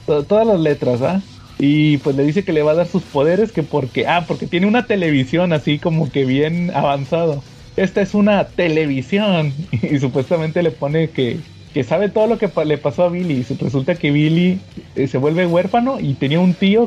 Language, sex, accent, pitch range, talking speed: Spanish, male, Mexican, 145-185 Hz, 210 wpm